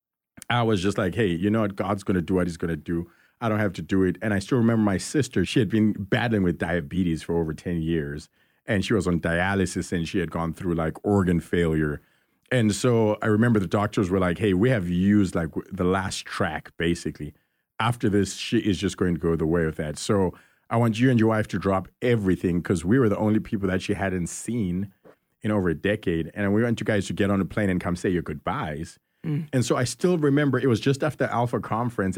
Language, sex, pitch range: English, male, 90-115 Hz